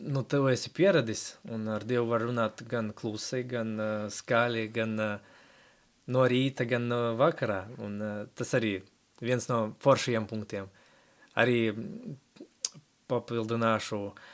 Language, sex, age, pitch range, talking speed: Russian, male, 20-39, 110-135 Hz, 135 wpm